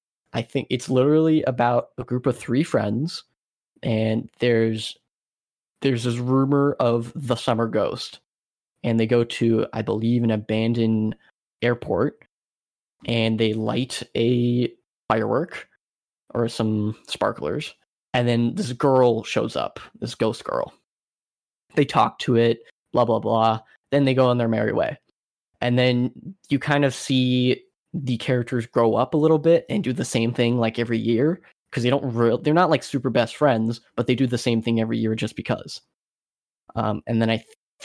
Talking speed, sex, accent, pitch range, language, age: 165 wpm, male, American, 115-130 Hz, English, 10-29